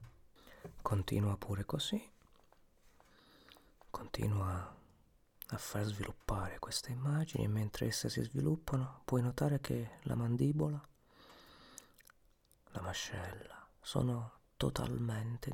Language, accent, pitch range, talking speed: Italian, native, 105-135 Hz, 85 wpm